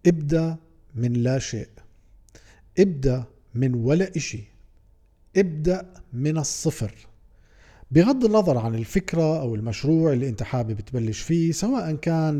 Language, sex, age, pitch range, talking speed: Arabic, male, 50-69, 125-165 Hz, 115 wpm